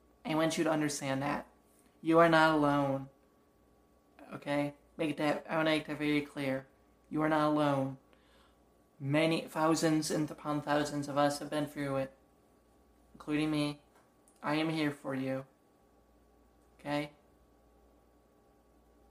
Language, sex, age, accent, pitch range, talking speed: English, male, 20-39, American, 130-155 Hz, 135 wpm